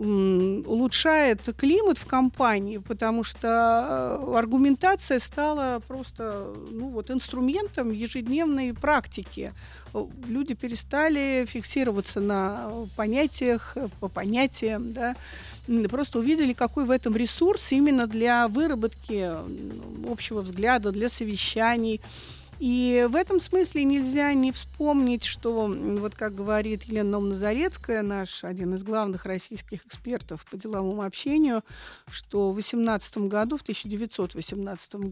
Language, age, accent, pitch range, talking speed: Russian, 50-69, native, 205-255 Hz, 105 wpm